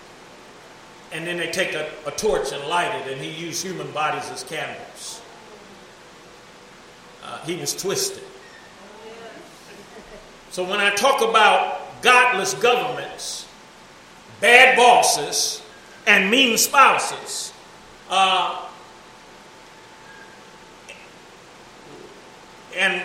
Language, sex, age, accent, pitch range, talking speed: English, male, 50-69, American, 195-270 Hz, 90 wpm